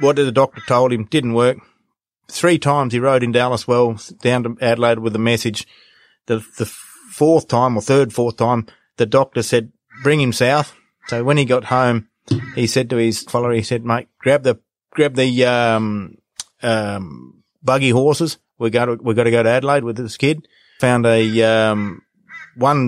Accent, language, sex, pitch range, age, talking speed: Australian, English, male, 115-140 Hz, 30-49, 190 wpm